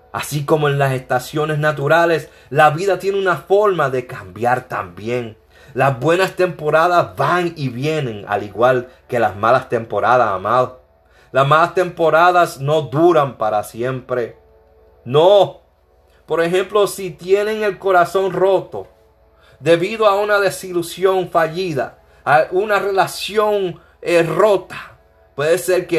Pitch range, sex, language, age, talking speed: 130-195 Hz, male, Spanish, 30-49, 125 wpm